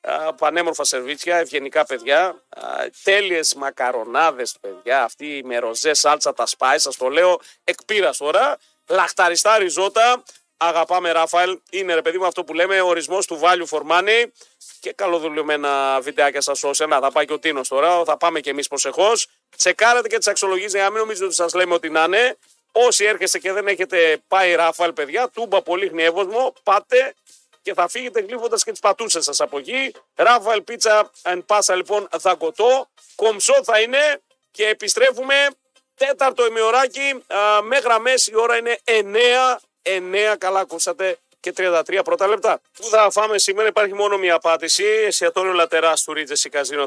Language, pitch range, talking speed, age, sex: Greek, 160-220 Hz, 160 wpm, 40-59, male